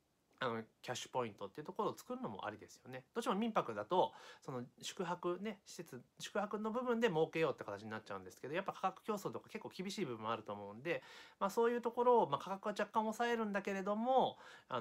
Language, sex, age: Japanese, male, 30-49